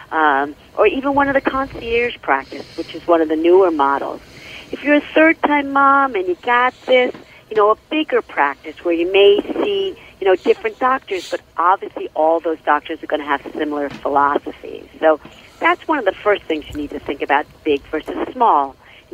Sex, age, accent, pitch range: female, 50-69, American, 155-225 Hz